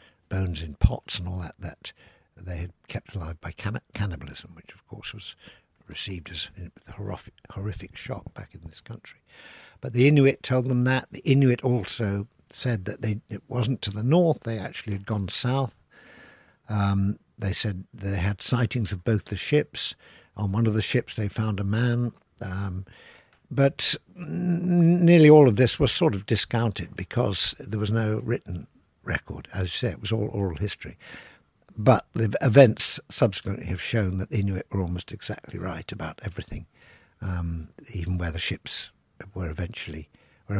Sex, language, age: male, English, 60-79